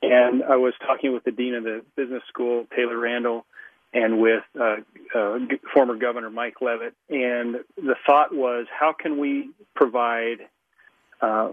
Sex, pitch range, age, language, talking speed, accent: male, 115-135 Hz, 40-59, English, 155 wpm, American